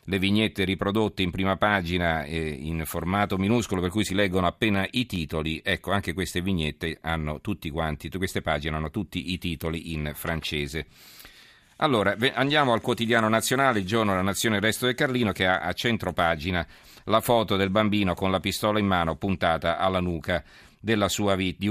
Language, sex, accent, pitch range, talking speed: Italian, male, native, 85-105 Hz, 175 wpm